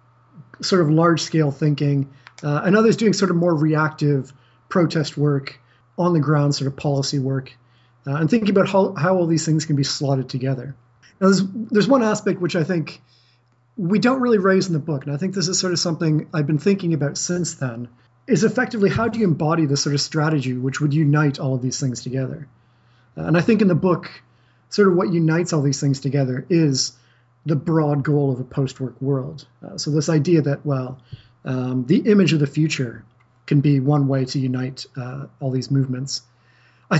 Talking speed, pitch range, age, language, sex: 205 wpm, 130-170 Hz, 30-49, English, male